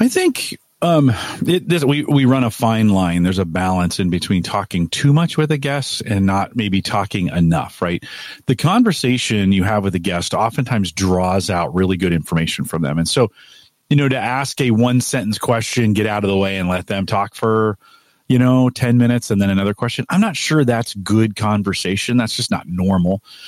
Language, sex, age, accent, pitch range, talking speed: English, male, 40-59, American, 100-140 Hz, 200 wpm